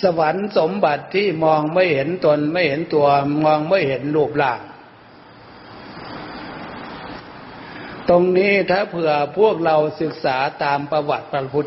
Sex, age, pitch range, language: male, 60-79, 140-170 Hz, Thai